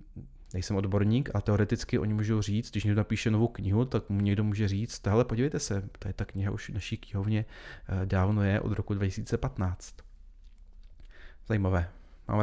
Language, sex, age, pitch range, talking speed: Czech, male, 30-49, 95-120 Hz, 170 wpm